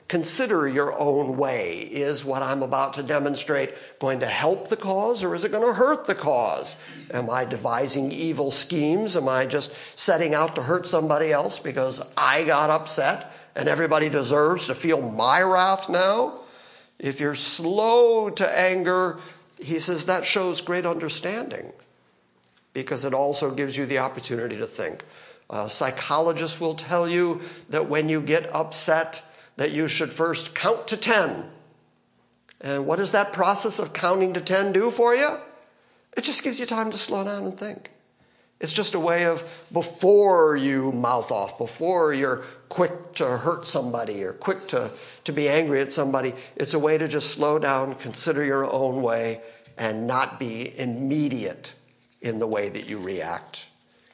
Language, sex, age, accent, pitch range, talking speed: English, male, 50-69, American, 135-180 Hz, 165 wpm